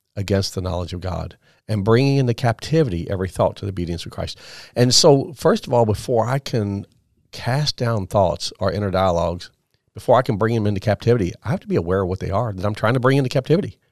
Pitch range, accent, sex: 100-130 Hz, American, male